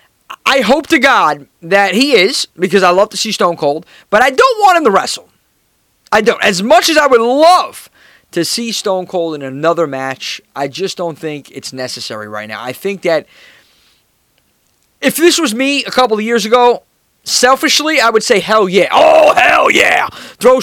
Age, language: 20-39, English